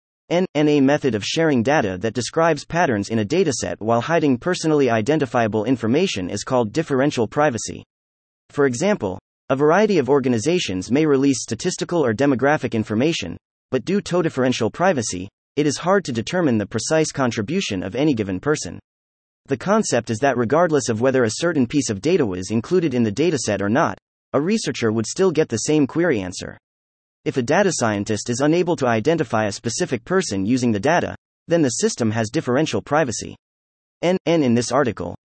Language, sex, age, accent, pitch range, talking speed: English, male, 30-49, American, 110-160 Hz, 175 wpm